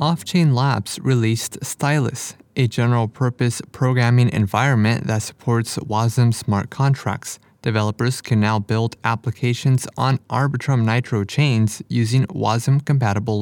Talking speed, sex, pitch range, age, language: 105 wpm, male, 110-130 Hz, 20-39, English